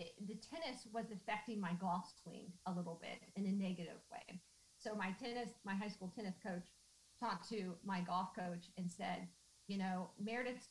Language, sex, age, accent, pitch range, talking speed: English, female, 40-59, American, 185-230 Hz, 180 wpm